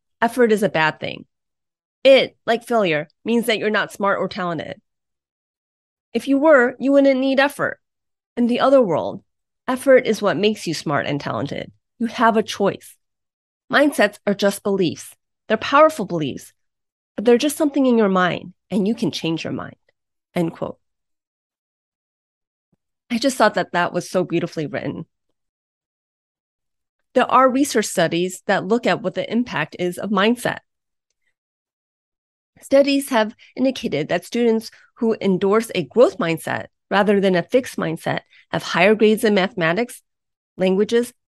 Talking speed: 150 wpm